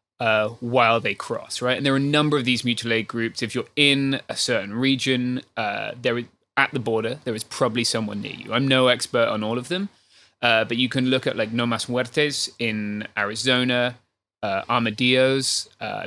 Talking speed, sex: 205 wpm, male